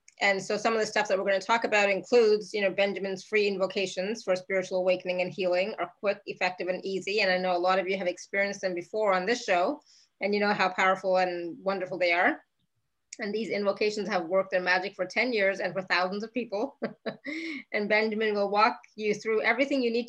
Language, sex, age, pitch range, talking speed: English, female, 20-39, 190-235 Hz, 225 wpm